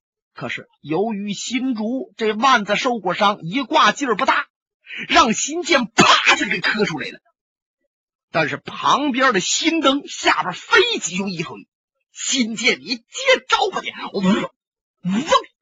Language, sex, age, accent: Chinese, male, 30-49, native